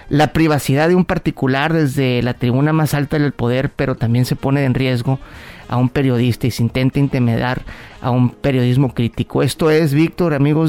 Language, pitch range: Spanish, 135-165 Hz